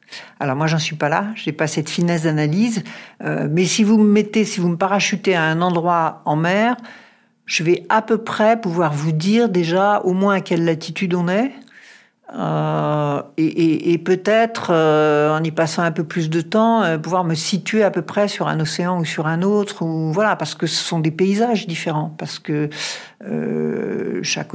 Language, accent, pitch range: French, French, 150-205 Hz